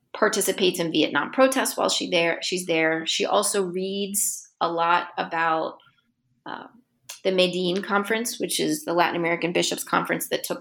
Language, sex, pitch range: English, female, 150-185 Hz